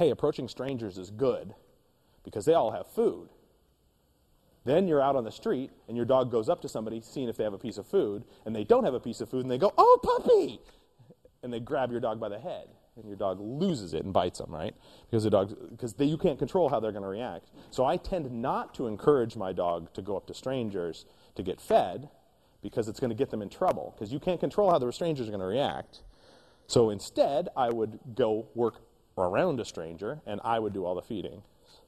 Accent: American